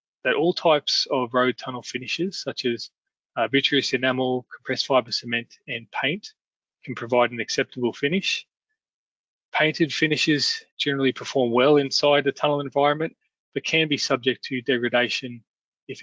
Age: 20-39